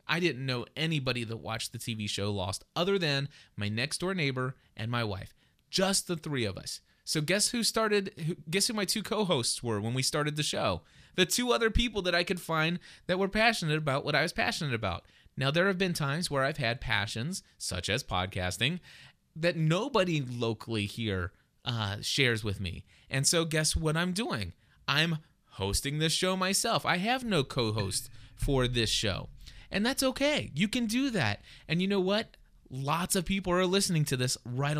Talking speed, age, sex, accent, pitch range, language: 195 wpm, 30-49, male, American, 125-190 Hz, English